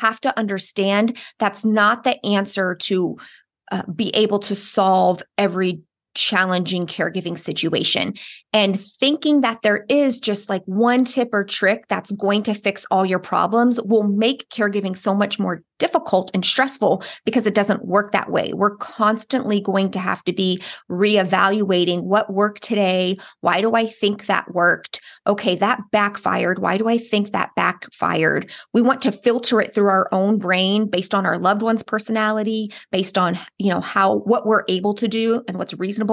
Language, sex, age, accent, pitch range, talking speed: English, female, 30-49, American, 190-225 Hz, 175 wpm